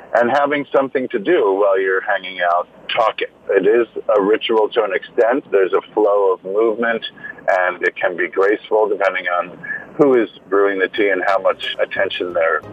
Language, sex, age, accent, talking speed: English, male, 50-69, American, 185 wpm